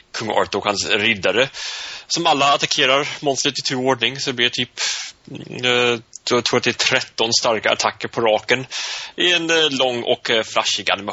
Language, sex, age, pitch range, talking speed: Swedish, male, 30-49, 100-130 Hz, 155 wpm